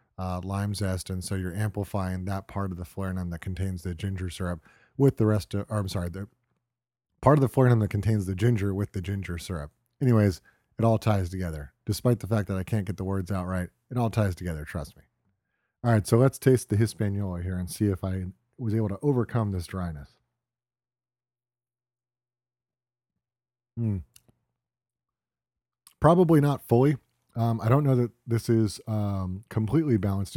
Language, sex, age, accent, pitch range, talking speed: English, male, 30-49, American, 95-115 Hz, 180 wpm